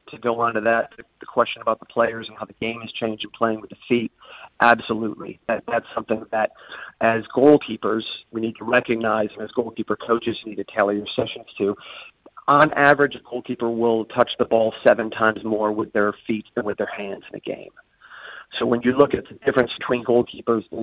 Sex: male